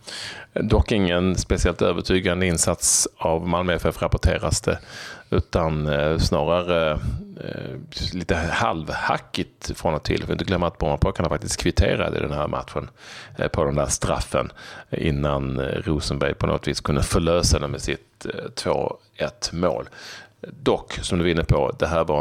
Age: 30-49